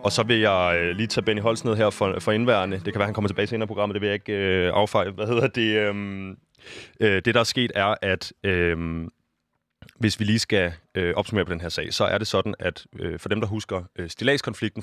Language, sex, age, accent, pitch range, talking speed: Danish, male, 30-49, native, 95-115 Hz, 255 wpm